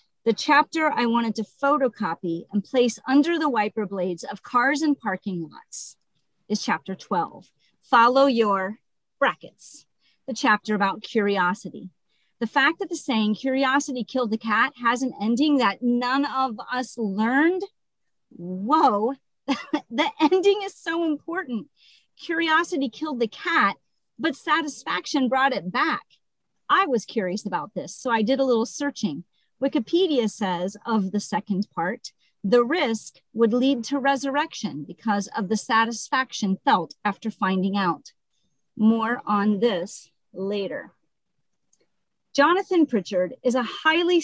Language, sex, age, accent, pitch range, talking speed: English, female, 40-59, American, 205-280 Hz, 135 wpm